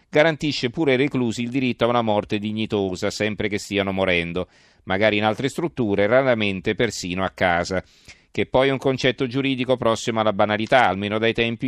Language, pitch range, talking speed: Italian, 100-125 Hz, 180 wpm